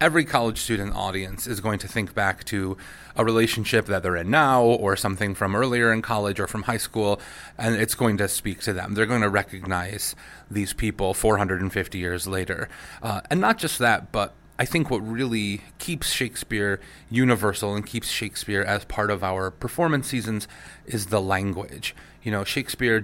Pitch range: 100-115 Hz